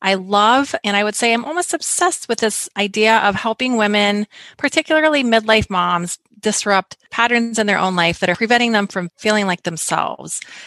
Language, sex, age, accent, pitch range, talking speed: English, female, 30-49, American, 180-215 Hz, 180 wpm